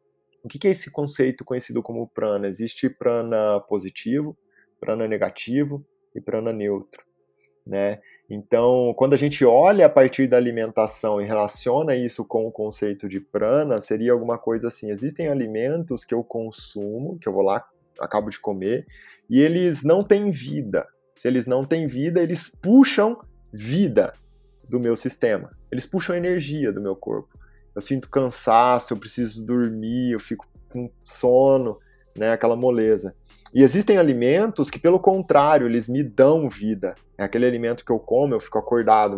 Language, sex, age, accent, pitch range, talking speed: Portuguese, male, 20-39, Brazilian, 110-150 Hz, 160 wpm